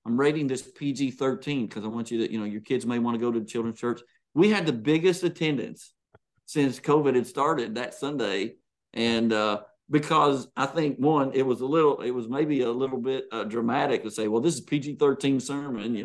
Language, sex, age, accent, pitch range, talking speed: English, male, 50-69, American, 115-150 Hz, 215 wpm